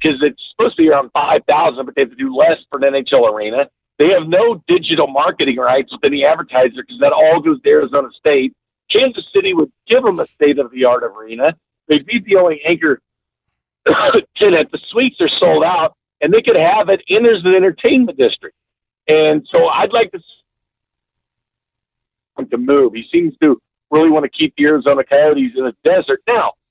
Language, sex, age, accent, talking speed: English, male, 50-69, American, 190 wpm